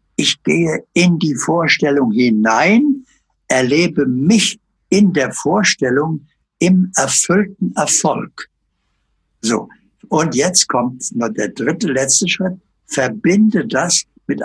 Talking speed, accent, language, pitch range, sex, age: 110 wpm, German, German, 130-195 Hz, male, 60-79